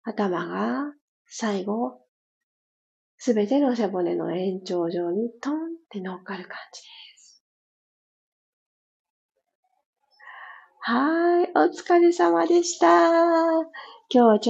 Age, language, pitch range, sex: 40-59, Japanese, 190-275 Hz, female